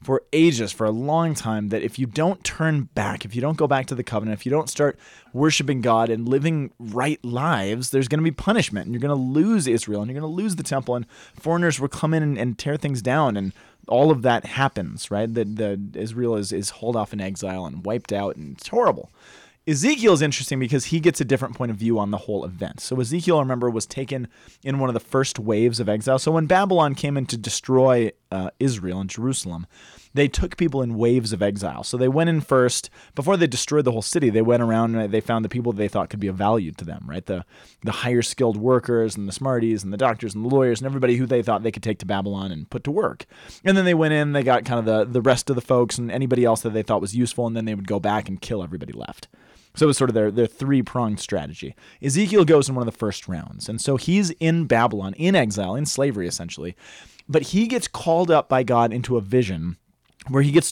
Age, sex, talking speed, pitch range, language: 20-39, male, 250 wpm, 110-140 Hz, English